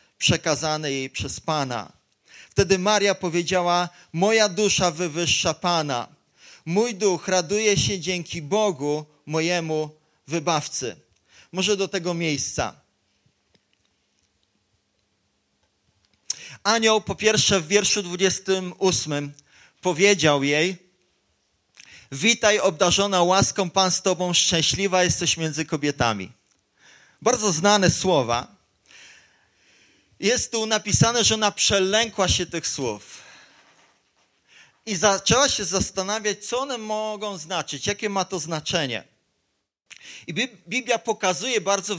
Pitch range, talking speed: 160-205 Hz, 100 wpm